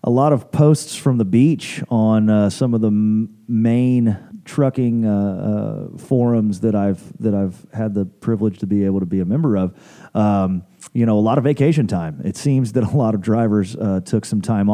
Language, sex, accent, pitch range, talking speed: English, male, American, 95-120 Hz, 210 wpm